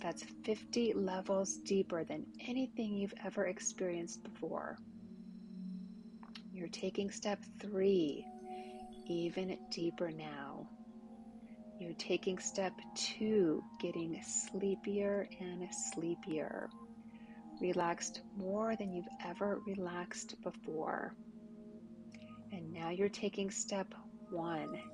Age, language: 30-49, English